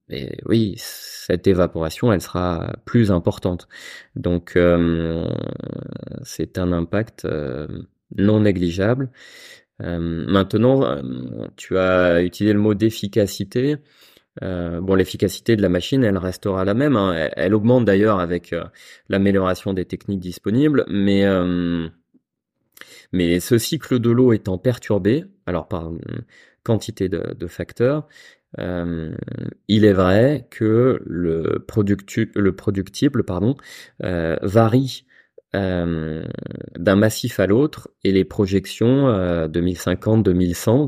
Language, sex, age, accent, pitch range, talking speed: French, male, 20-39, French, 90-115 Hz, 120 wpm